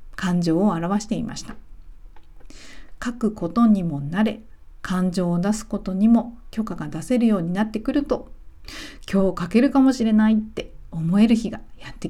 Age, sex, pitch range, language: 50-69, female, 160-235 Hz, Japanese